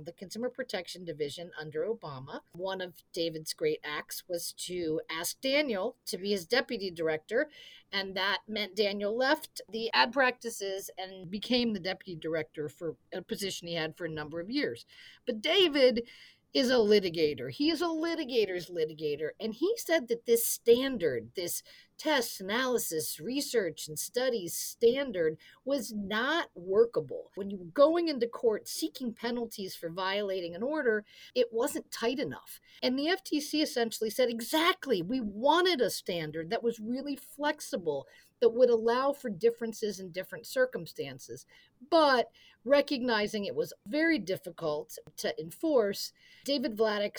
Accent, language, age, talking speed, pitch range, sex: American, English, 50-69, 150 wpm, 180-275 Hz, female